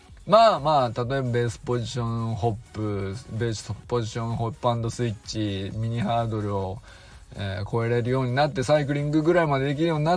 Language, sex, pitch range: Japanese, male, 110-155 Hz